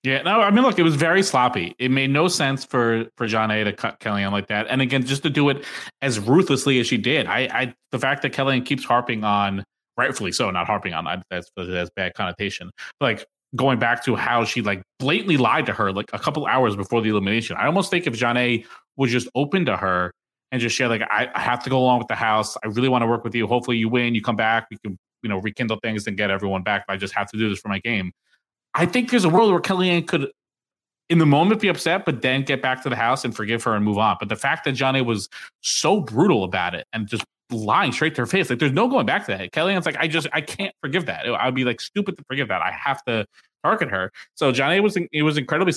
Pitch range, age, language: 105-135 Hz, 20-39, English